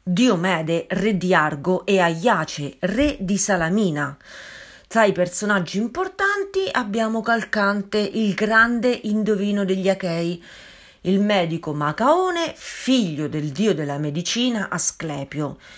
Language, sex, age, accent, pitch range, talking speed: Italian, female, 40-59, native, 165-230 Hz, 110 wpm